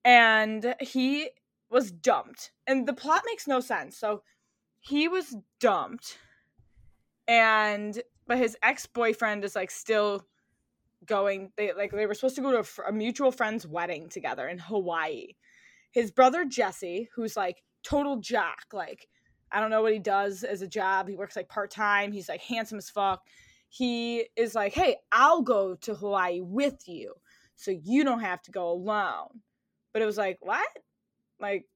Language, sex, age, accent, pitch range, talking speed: English, female, 20-39, American, 195-255 Hz, 165 wpm